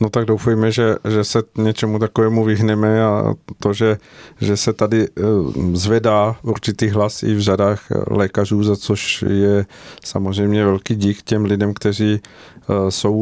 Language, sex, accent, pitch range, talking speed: Czech, male, native, 100-110 Hz, 145 wpm